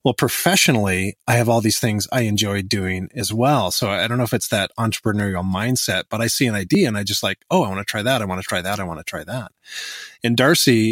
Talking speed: 265 wpm